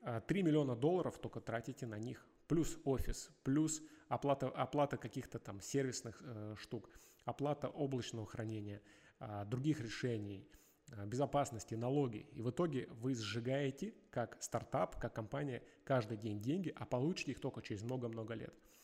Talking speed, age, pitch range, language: 145 wpm, 20-39, 115-145 Hz, Russian